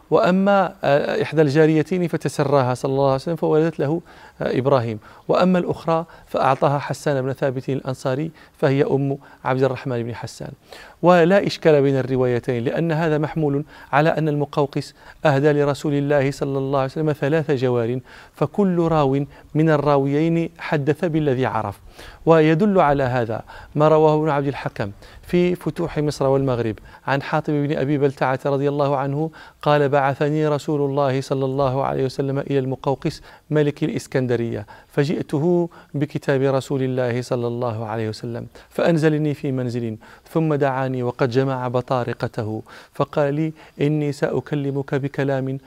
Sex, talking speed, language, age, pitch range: male, 135 wpm, Arabic, 40-59, 125-150 Hz